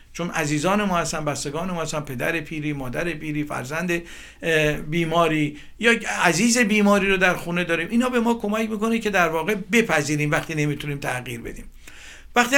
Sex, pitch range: male, 155-205 Hz